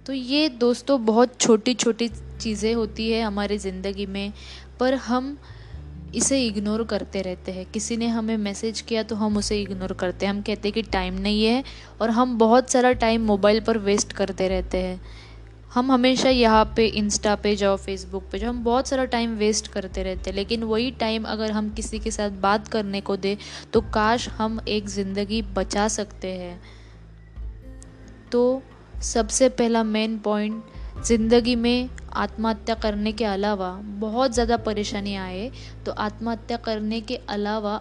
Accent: native